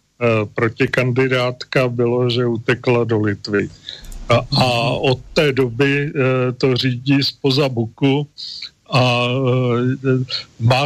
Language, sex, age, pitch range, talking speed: Slovak, male, 40-59, 120-135 Hz, 95 wpm